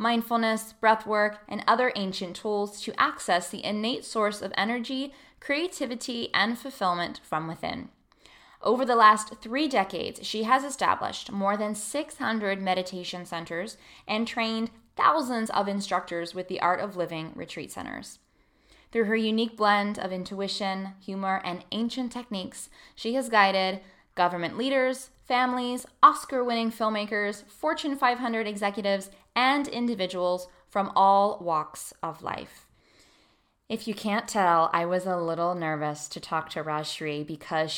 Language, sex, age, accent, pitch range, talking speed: English, female, 10-29, American, 170-225 Hz, 135 wpm